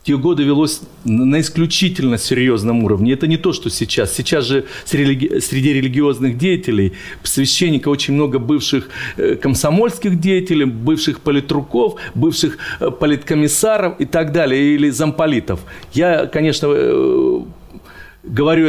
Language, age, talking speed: Russian, 40-59, 110 wpm